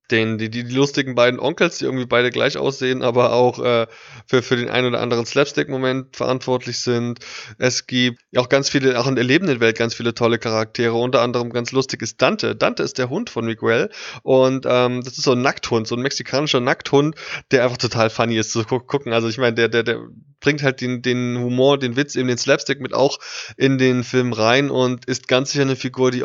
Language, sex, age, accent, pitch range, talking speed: German, male, 20-39, German, 115-130 Hz, 225 wpm